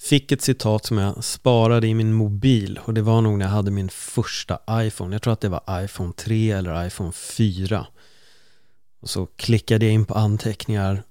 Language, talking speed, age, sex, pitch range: Swedish, 195 wpm, 30-49, male, 100-115 Hz